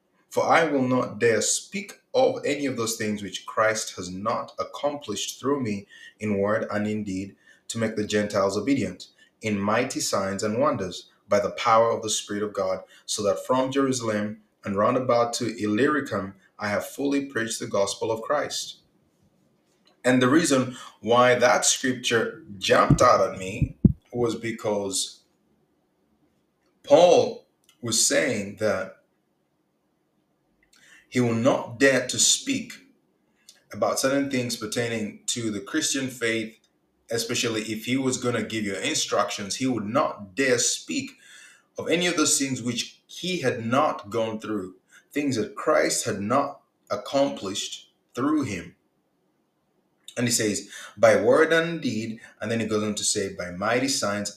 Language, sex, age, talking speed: English, male, 20-39, 150 wpm